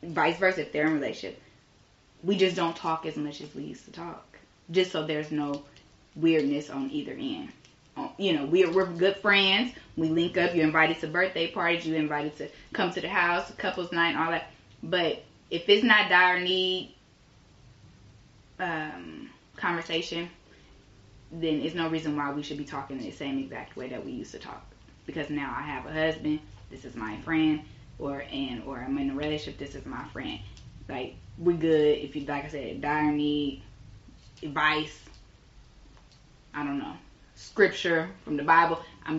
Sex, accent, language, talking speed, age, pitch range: female, American, English, 180 wpm, 20-39, 140-170 Hz